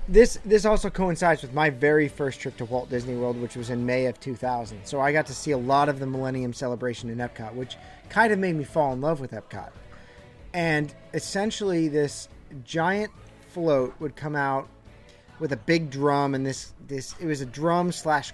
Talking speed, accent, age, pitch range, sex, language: 205 wpm, American, 30-49, 125-155 Hz, male, English